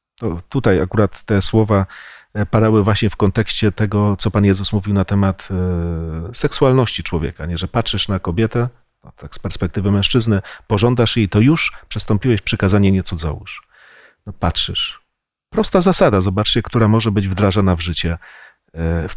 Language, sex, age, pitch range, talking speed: Polish, male, 40-59, 95-125 Hz, 145 wpm